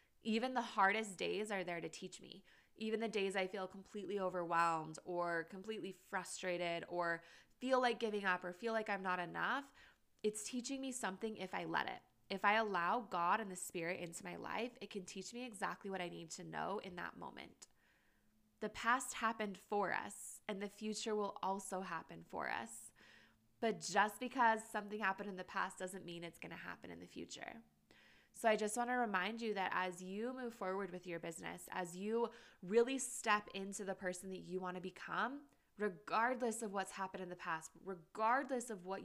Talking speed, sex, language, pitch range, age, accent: 195 wpm, female, English, 180-230 Hz, 20-39, American